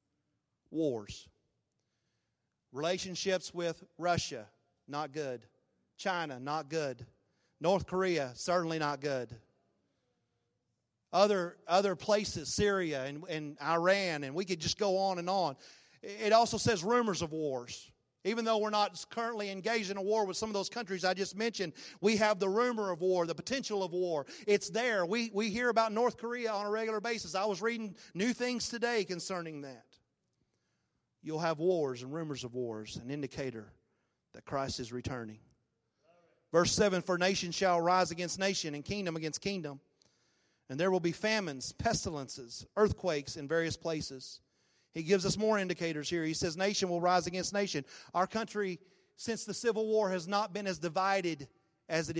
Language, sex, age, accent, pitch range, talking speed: English, male, 40-59, American, 145-200 Hz, 165 wpm